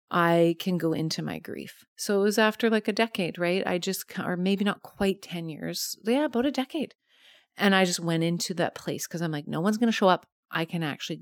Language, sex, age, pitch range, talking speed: English, female, 30-49, 170-215 Hz, 240 wpm